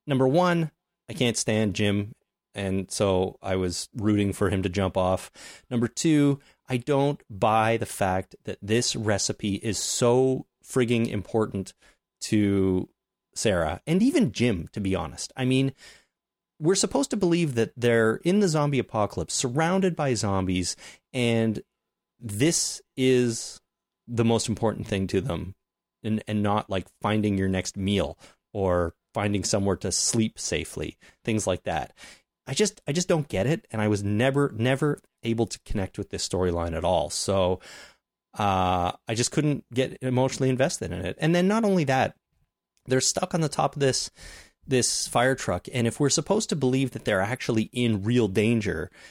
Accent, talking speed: American, 165 wpm